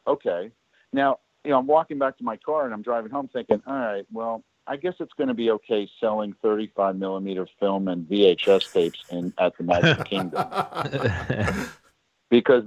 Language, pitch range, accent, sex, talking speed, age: English, 100-140 Hz, American, male, 180 wpm, 50-69